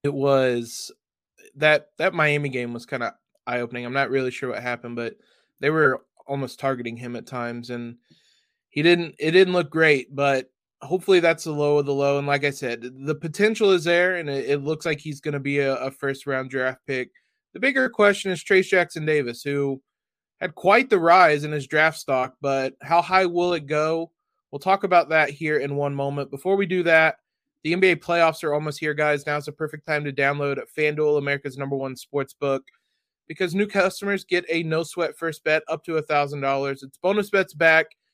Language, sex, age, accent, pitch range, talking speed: English, male, 20-39, American, 140-170 Hz, 210 wpm